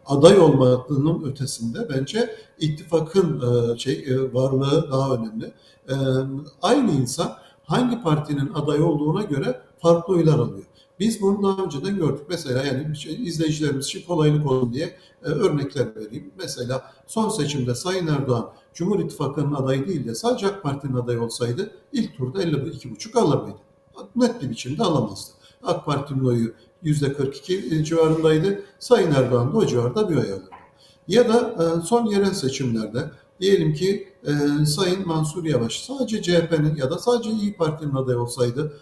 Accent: native